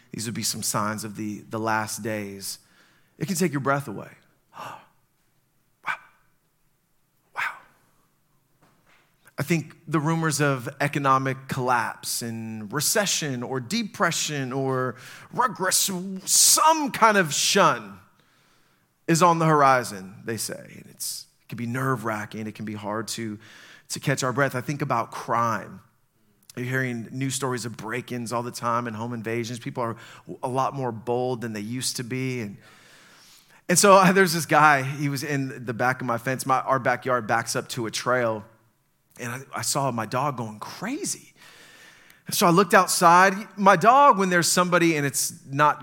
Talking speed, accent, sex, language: 165 wpm, American, male, English